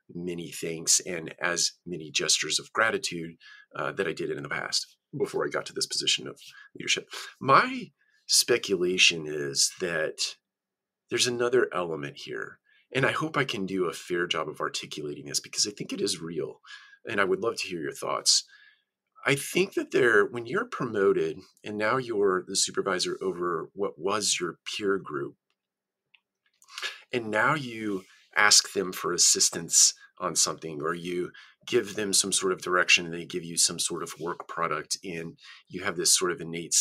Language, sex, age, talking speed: English, male, 40-59, 175 wpm